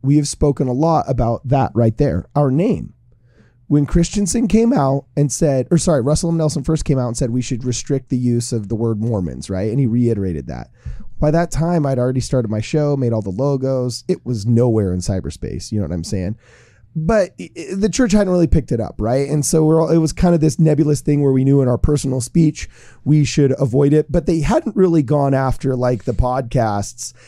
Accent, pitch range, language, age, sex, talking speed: American, 120-155 Hz, English, 30-49, male, 220 wpm